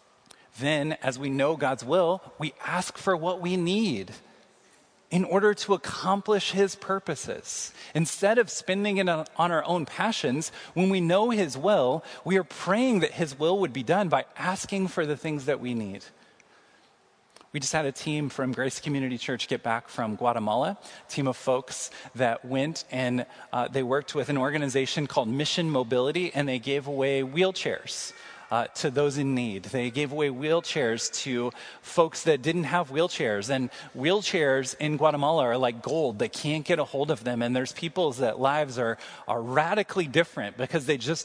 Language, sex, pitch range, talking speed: English, male, 130-175 Hz, 180 wpm